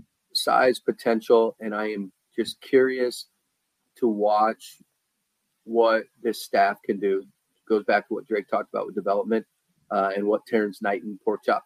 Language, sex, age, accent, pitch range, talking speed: English, male, 40-59, American, 105-115 Hz, 160 wpm